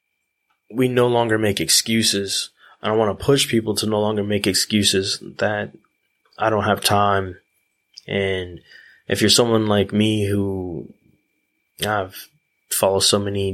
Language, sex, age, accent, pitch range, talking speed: English, male, 20-39, American, 95-110 Hz, 140 wpm